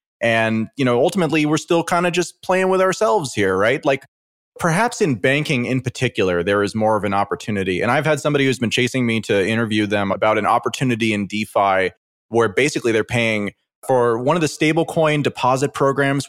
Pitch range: 110-155 Hz